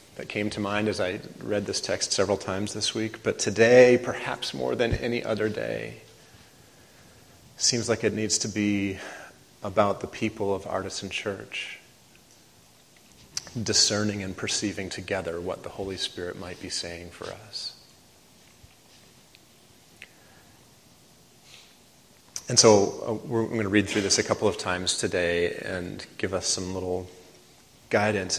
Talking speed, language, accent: 140 wpm, English, American